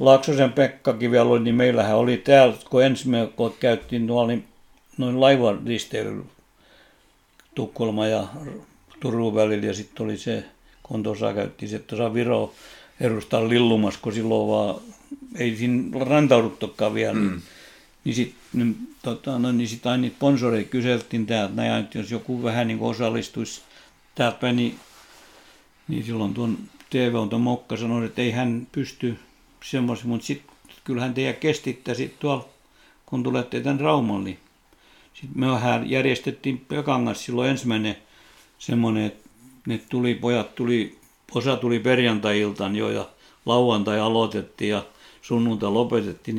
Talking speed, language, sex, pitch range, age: 135 wpm, Finnish, male, 110-125 Hz, 60-79